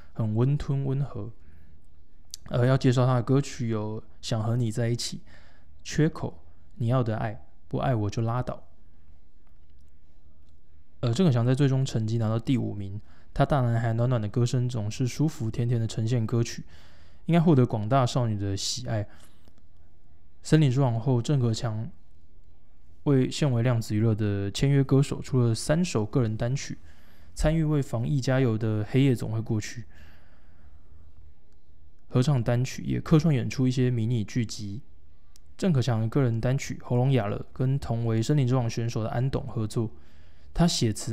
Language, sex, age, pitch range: Chinese, male, 20-39, 85-130 Hz